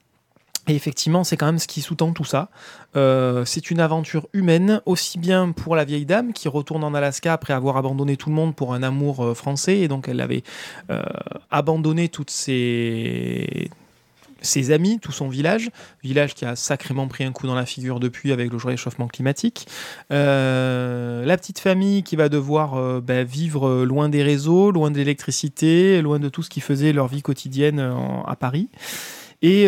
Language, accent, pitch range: French, French, 130-165 Hz